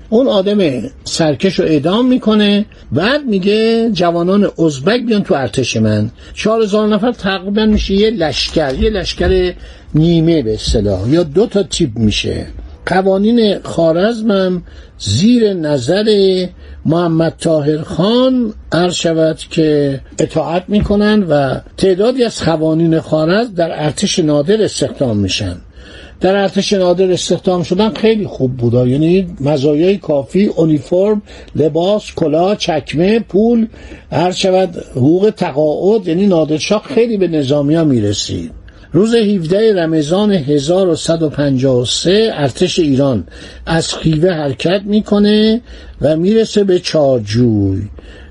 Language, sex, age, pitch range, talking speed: Persian, male, 60-79, 150-205 Hz, 115 wpm